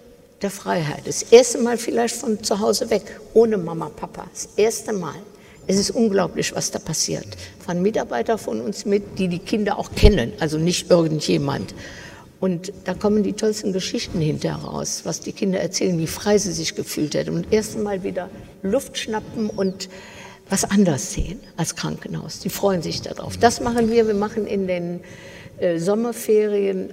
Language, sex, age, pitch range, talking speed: German, female, 60-79, 180-220 Hz, 175 wpm